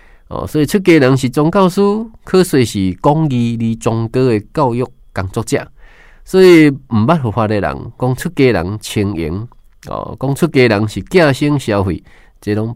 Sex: male